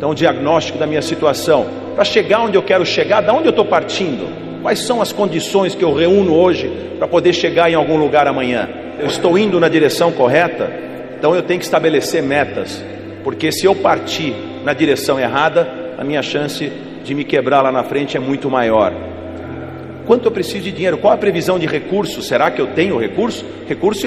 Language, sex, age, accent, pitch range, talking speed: Portuguese, male, 40-59, Brazilian, 135-175 Hz, 195 wpm